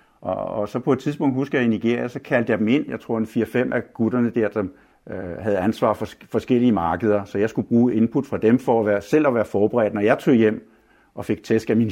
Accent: native